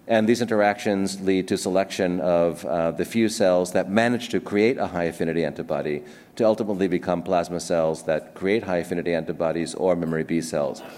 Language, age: English, 40-59